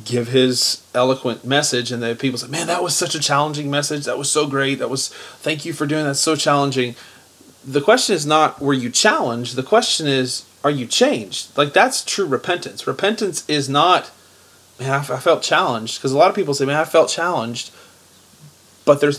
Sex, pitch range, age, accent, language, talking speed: male, 125-150 Hz, 30-49, American, English, 205 wpm